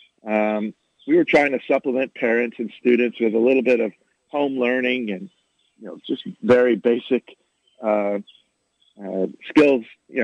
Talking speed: 150 wpm